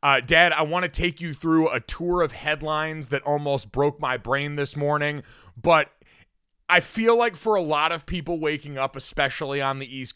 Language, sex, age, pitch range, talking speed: English, male, 30-49, 135-175 Hz, 200 wpm